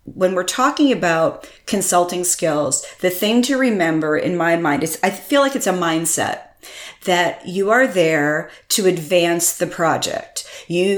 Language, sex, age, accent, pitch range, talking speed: English, female, 40-59, American, 165-215 Hz, 160 wpm